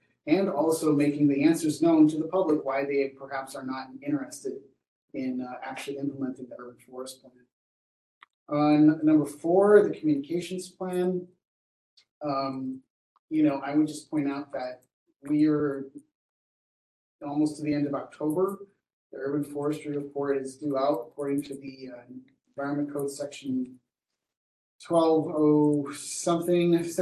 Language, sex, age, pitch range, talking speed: English, male, 30-49, 135-170 Hz, 140 wpm